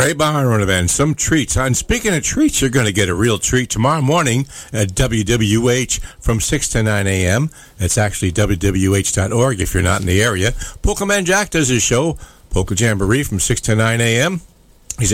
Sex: male